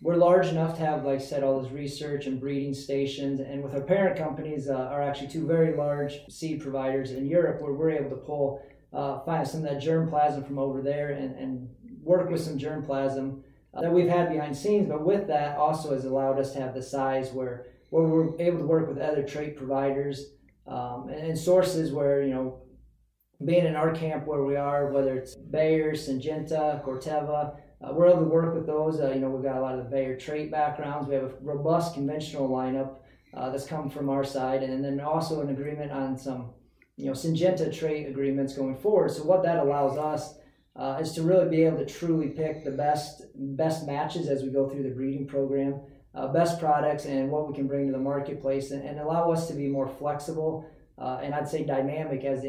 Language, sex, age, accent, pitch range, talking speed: English, male, 30-49, American, 135-155 Hz, 220 wpm